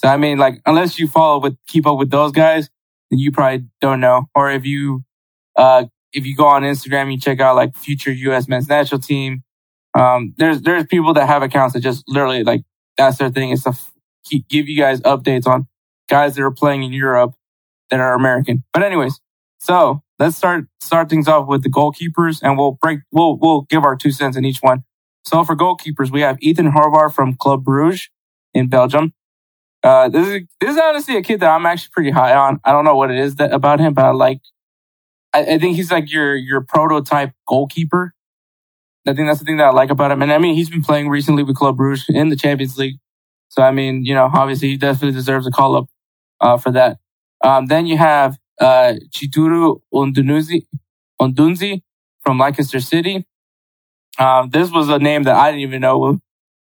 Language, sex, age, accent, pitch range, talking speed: English, male, 20-39, American, 130-155 Hz, 210 wpm